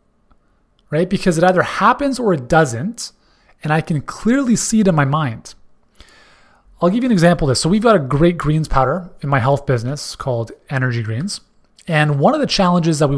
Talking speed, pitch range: 205 wpm, 135-190 Hz